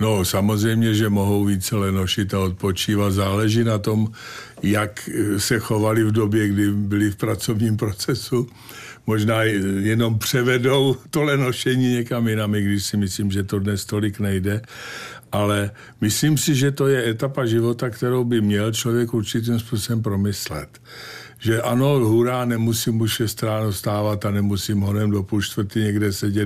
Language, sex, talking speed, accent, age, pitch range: Czech, male, 150 wpm, native, 50-69, 105-120 Hz